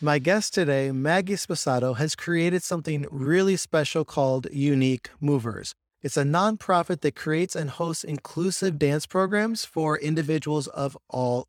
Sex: male